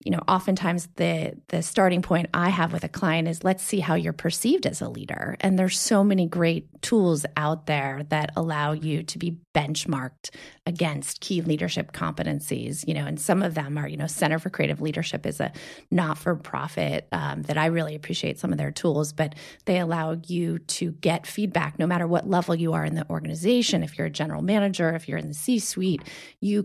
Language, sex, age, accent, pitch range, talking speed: English, female, 30-49, American, 155-190 Hz, 205 wpm